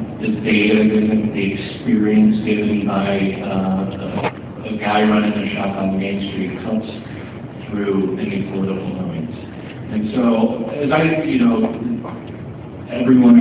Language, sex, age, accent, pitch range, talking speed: English, male, 50-69, American, 100-155 Hz, 130 wpm